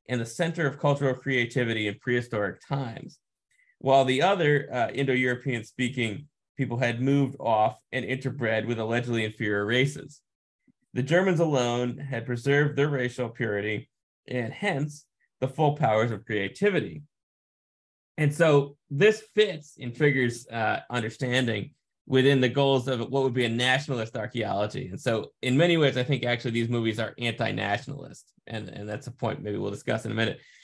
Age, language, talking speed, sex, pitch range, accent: 30-49, English, 160 wpm, male, 115-140 Hz, American